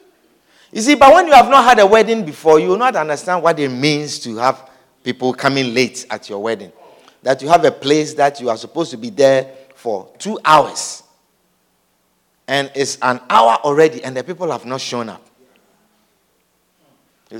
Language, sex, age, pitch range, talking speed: English, male, 50-69, 135-205 Hz, 185 wpm